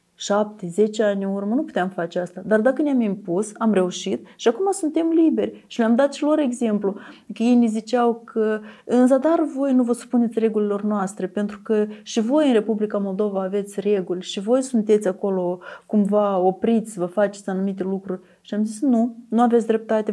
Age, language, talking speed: 30-49, Romanian, 195 wpm